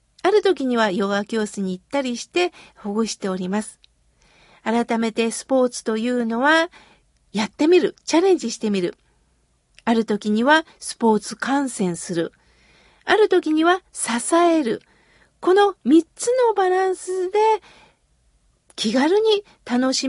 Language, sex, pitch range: Japanese, female, 235-350 Hz